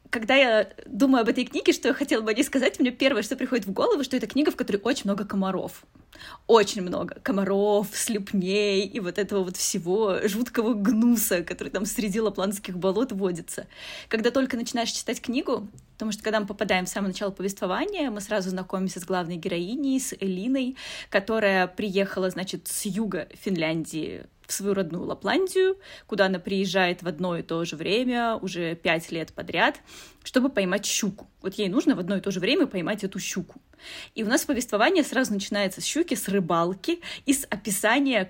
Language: Russian